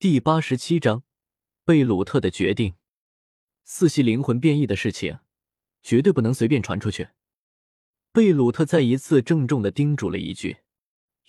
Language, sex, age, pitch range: Chinese, male, 20-39, 105-150 Hz